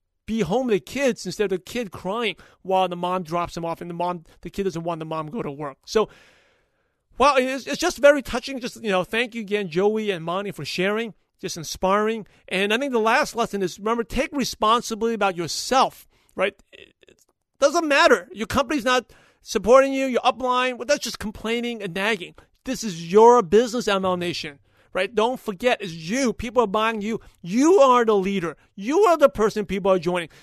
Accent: American